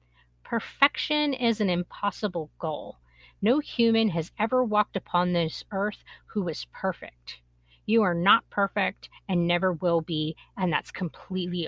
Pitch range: 155-225 Hz